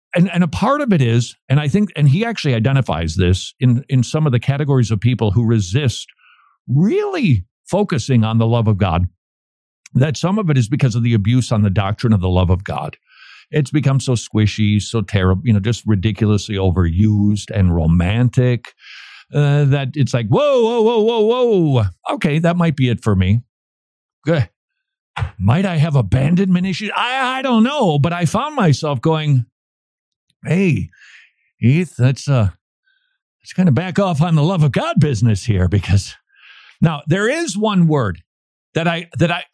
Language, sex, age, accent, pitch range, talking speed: English, male, 50-69, American, 115-180 Hz, 180 wpm